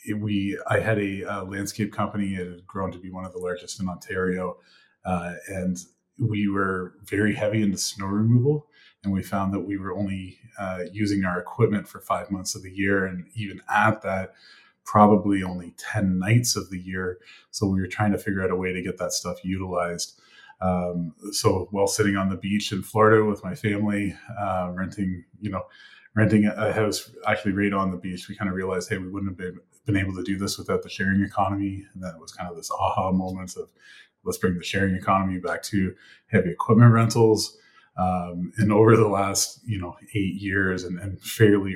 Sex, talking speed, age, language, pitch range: male, 205 wpm, 30-49, English, 90-105 Hz